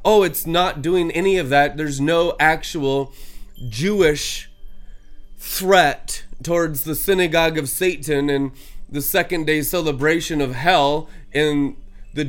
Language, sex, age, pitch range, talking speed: English, male, 20-39, 130-165 Hz, 125 wpm